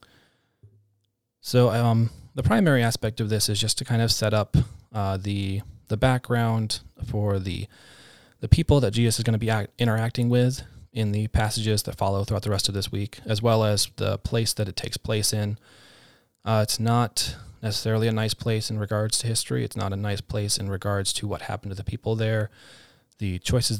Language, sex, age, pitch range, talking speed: English, male, 20-39, 100-120 Hz, 200 wpm